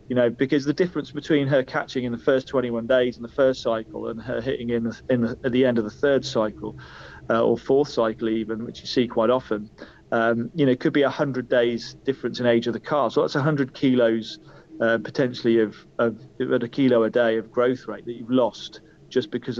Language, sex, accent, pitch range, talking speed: English, male, British, 115-135 Hz, 235 wpm